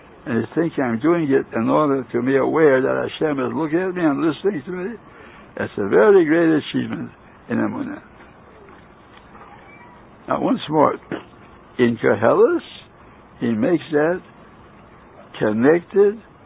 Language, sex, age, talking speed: English, male, 60-79, 135 wpm